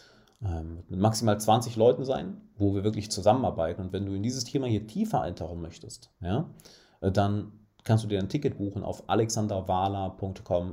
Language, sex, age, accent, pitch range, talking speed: German, male, 30-49, German, 90-110 Hz, 160 wpm